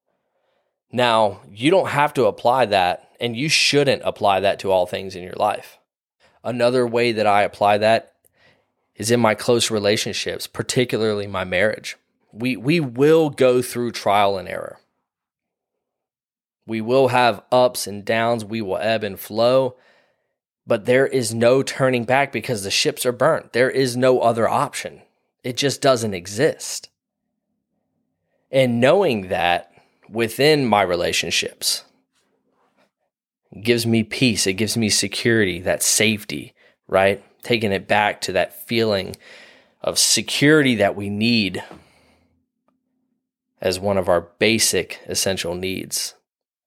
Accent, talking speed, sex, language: American, 135 wpm, male, English